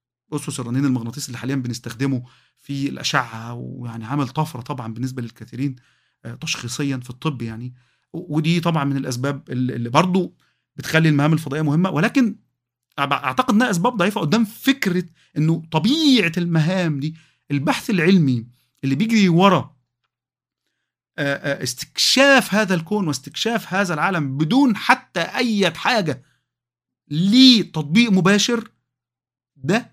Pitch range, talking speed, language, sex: 140-205 Hz, 115 wpm, Arabic, male